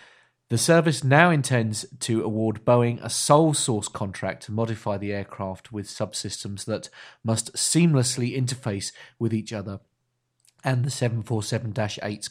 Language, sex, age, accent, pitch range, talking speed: English, male, 40-59, British, 100-125 Hz, 130 wpm